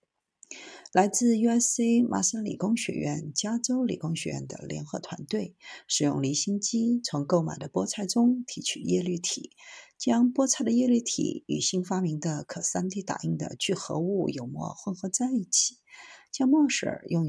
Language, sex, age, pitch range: Chinese, female, 50-69, 165-240 Hz